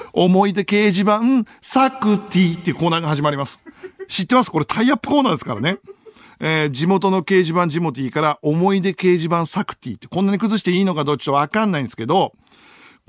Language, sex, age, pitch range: Japanese, male, 60-79, 155-230 Hz